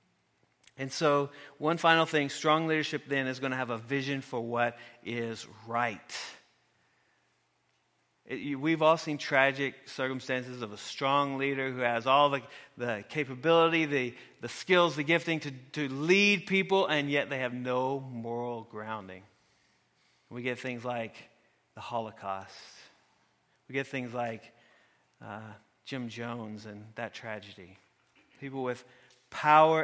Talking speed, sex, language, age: 140 wpm, male, English, 40-59